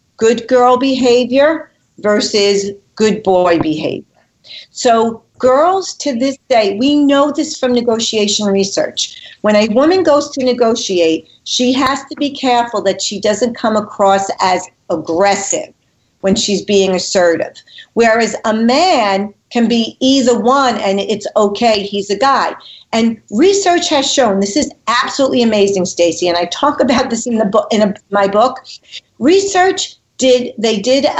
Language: English